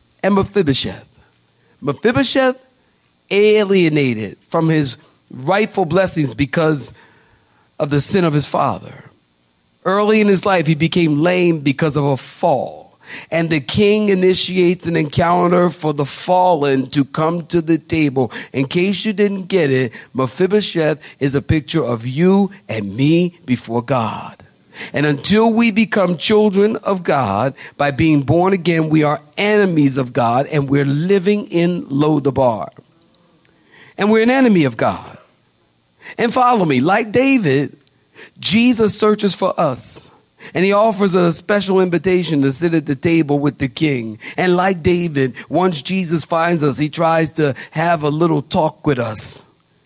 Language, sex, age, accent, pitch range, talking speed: English, male, 50-69, American, 140-190 Hz, 145 wpm